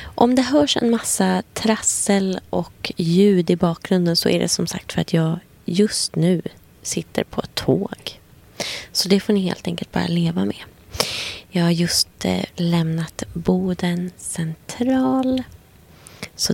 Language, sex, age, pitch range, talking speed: Swedish, female, 20-39, 160-195 Hz, 145 wpm